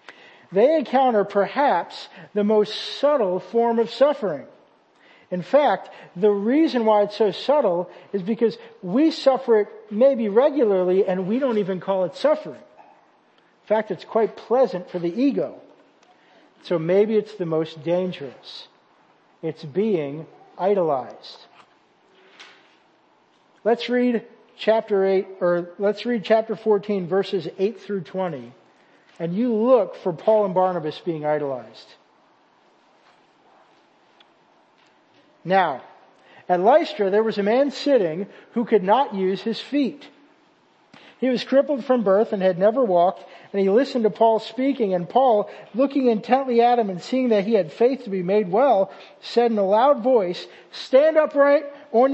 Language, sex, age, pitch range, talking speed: English, male, 50-69, 190-250 Hz, 140 wpm